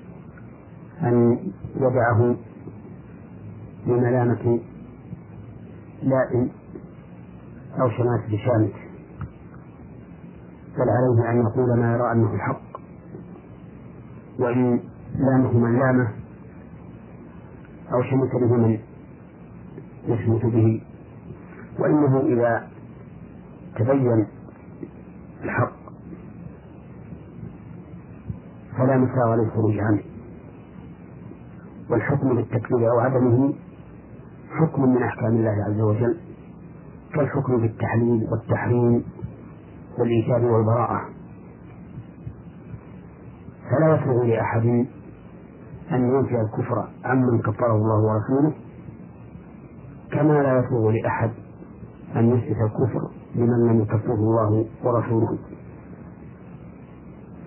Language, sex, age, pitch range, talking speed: Arabic, male, 50-69, 110-125 Hz, 75 wpm